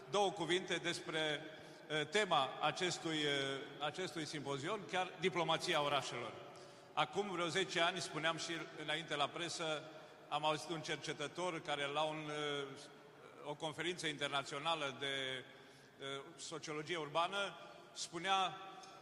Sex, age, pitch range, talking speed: male, 40-59, 155-185 Hz, 105 wpm